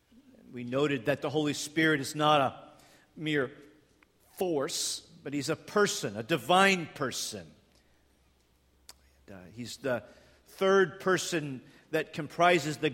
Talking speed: 125 wpm